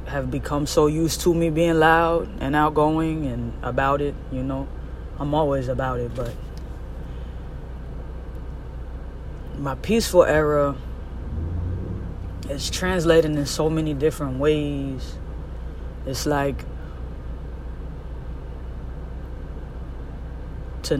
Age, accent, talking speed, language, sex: 20-39, American, 95 wpm, English, female